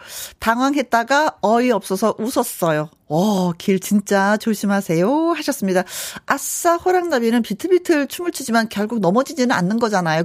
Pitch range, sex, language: 175-250 Hz, female, Korean